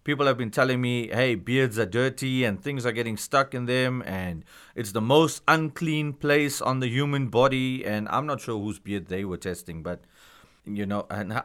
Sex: male